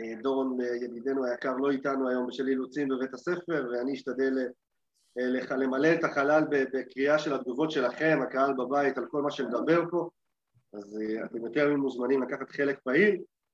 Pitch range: 135-175 Hz